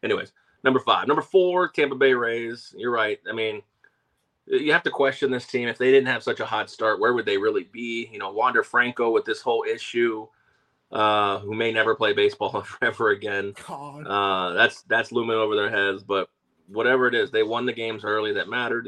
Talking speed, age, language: 205 wpm, 30-49, English